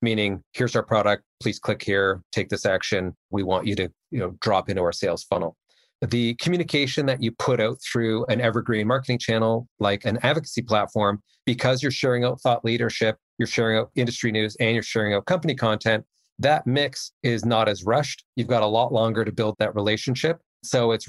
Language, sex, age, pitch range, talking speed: English, male, 40-59, 105-120 Hz, 200 wpm